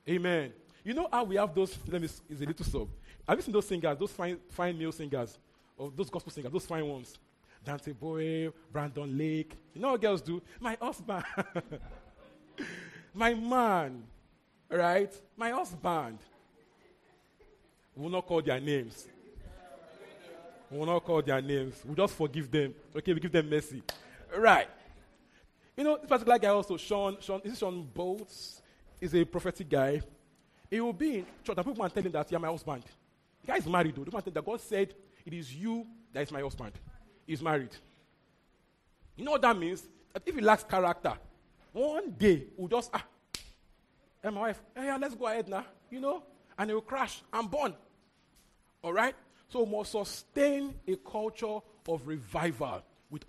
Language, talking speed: English, 180 wpm